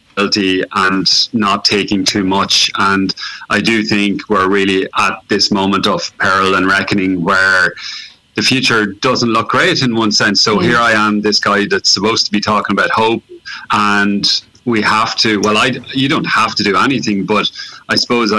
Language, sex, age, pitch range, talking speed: English, male, 30-49, 95-110 Hz, 180 wpm